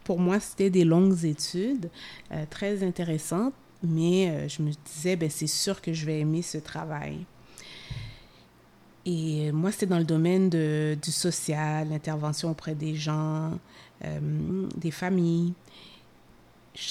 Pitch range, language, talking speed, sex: 150-185 Hz, English, 140 wpm, female